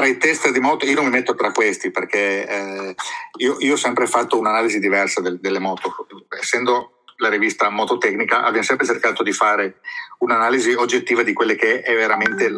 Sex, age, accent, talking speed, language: male, 50-69, native, 180 wpm, Italian